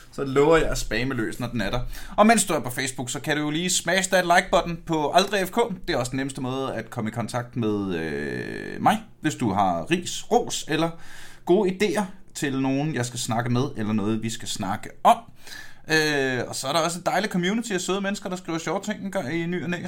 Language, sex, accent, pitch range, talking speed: Danish, male, native, 120-170 Hz, 235 wpm